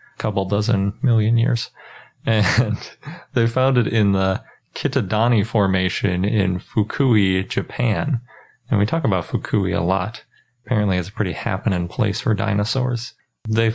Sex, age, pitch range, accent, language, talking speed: male, 30-49, 100-120 Hz, American, English, 135 wpm